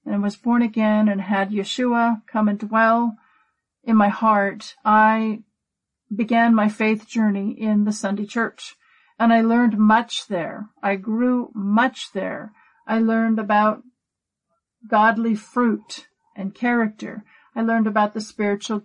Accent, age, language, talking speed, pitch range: American, 50-69, English, 135 wpm, 210-240 Hz